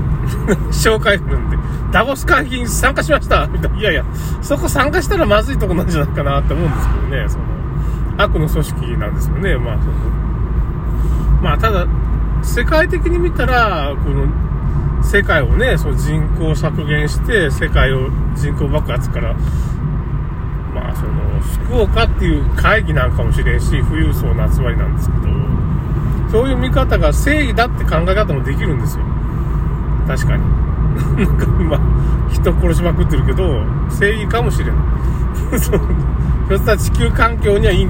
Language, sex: Japanese, male